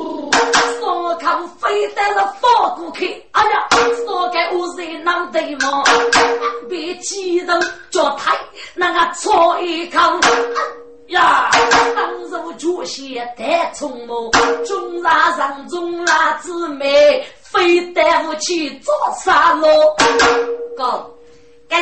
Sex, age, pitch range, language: female, 30-49, 275-350 Hz, Chinese